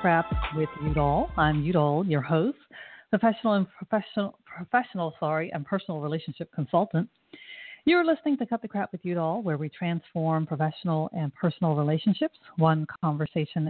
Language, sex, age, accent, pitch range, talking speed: English, female, 40-59, American, 155-205 Hz, 145 wpm